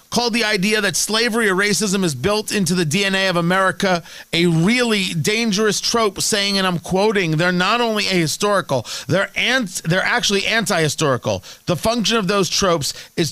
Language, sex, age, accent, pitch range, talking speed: English, male, 40-59, American, 155-210 Hz, 165 wpm